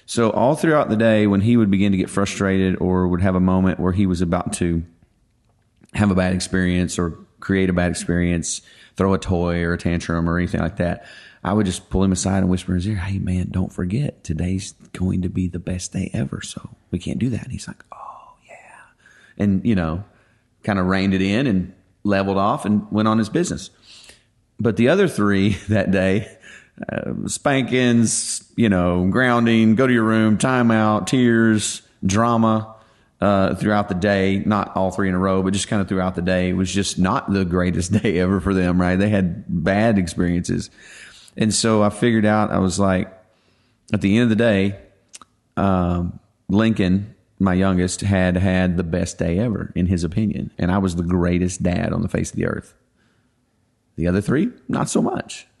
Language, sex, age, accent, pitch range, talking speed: English, male, 40-59, American, 90-105 Hz, 200 wpm